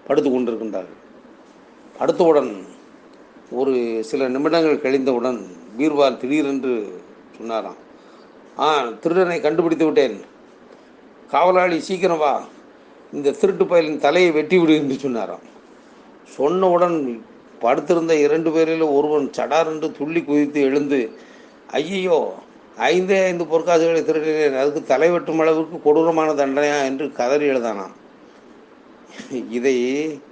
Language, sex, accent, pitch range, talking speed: Tamil, male, native, 140-170 Hz, 95 wpm